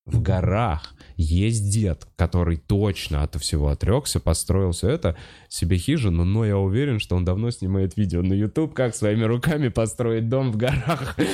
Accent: native